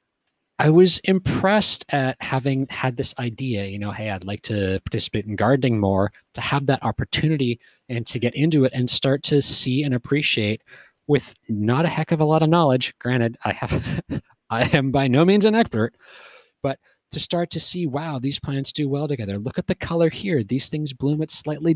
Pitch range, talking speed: 120-155 Hz, 200 wpm